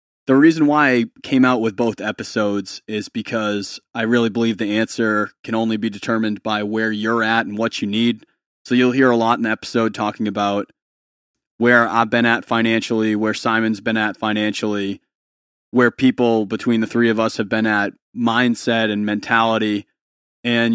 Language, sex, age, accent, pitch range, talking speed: English, male, 20-39, American, 110-120 Hz, 180 wpm